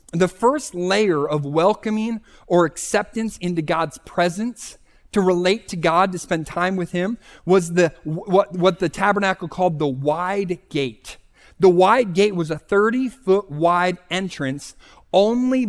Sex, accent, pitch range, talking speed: male, American, 155-210 Hz, 150 wpm